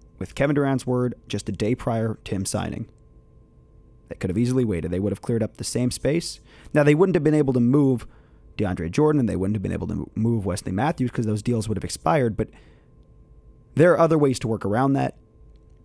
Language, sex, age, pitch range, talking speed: English, male, 30-49, 105-140 Hz, 225 wpm